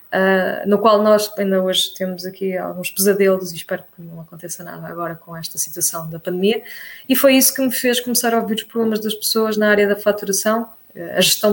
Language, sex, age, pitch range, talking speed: Portuguese, female, 20-39, 190-230 Hz, 215 wpm